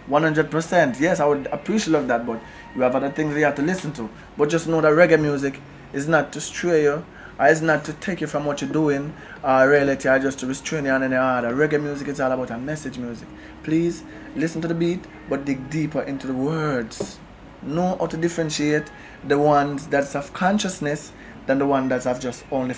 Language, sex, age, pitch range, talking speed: English, male, 20-39, 140-175 Hz, 225 wpm